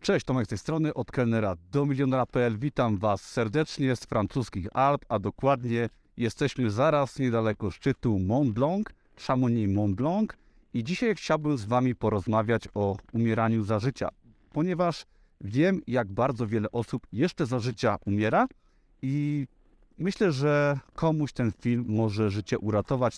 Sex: male